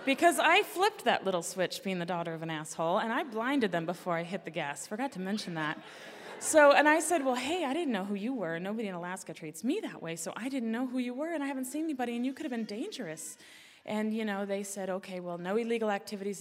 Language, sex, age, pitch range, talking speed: English, female, 20-39, 180-240 Hz, 265 wpm